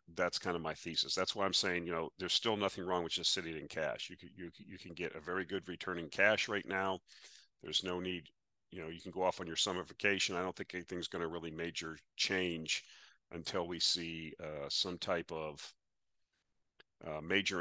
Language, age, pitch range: English, 40-59, 85-95 Hz